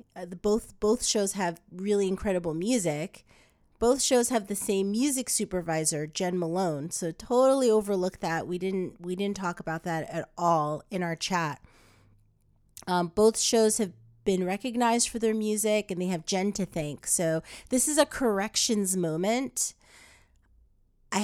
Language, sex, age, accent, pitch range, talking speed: English, female, 30-49, American, 165-215 Hz, 160 wpm